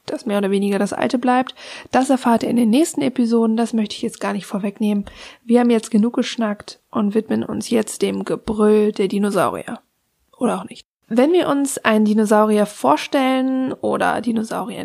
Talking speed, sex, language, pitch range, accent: 180 wpm, female, German, 210-255 Hz, German